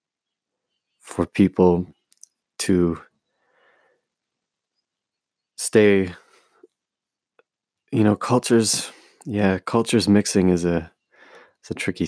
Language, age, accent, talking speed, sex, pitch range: English, 20-39, American, 75 wpm, male, 85-95 Hz